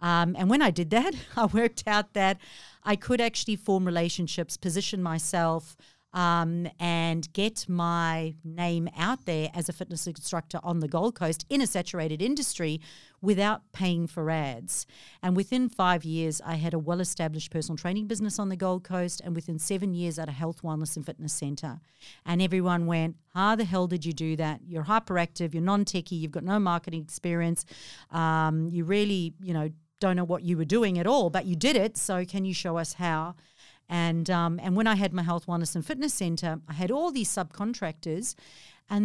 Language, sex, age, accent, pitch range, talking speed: English, female, 50-69, Australian, 170-210 Hz, 195 wpm